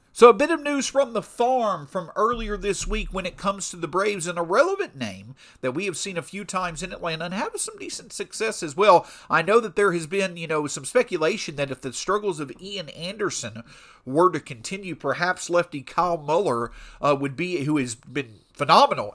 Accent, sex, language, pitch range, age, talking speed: American, male, English, 145-200 Hz, 50-69, 215 wpm